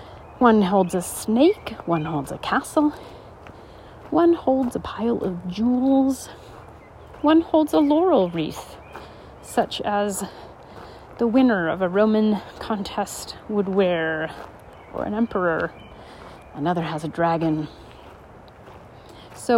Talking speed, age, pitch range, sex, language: 115 wpm, 40-59, 175-240 Hz, female, English